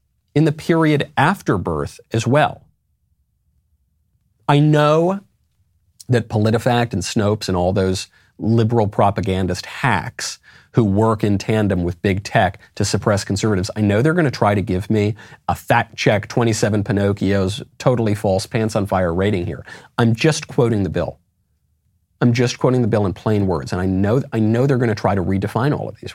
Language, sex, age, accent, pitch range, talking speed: English, male, 40-59, American, 95-130 Hz, 175 wpm